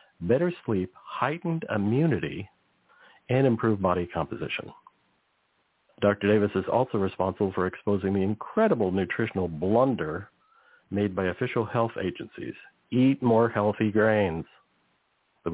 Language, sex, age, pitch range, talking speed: English, male, 50-69, 95-115 Hz, 110 wpm